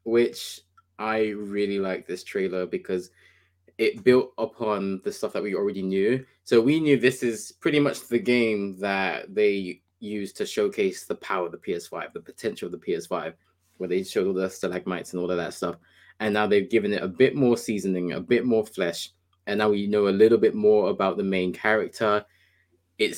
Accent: British